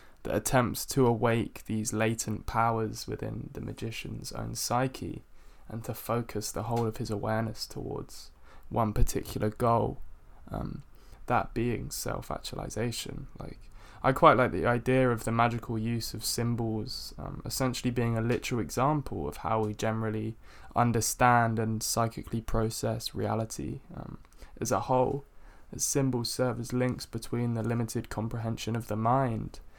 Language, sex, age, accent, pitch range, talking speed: English, male, 10-29, British, 110-125 Hz, 145 wpm